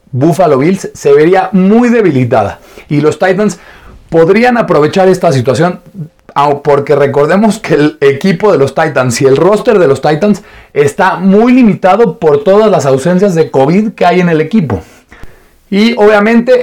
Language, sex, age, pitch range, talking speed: Spanish, male, 30-49, 160-215 Hz, 155 wpm